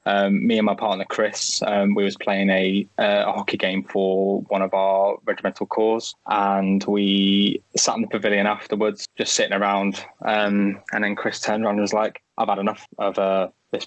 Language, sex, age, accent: English, male, 10-29, British